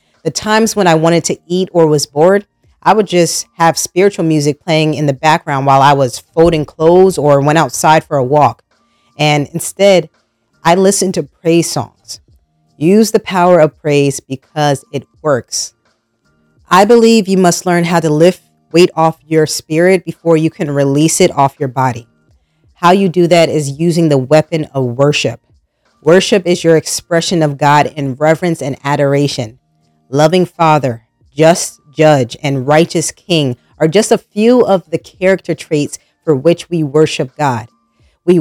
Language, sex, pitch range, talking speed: English, female, 140-175 Hz, 165 wpm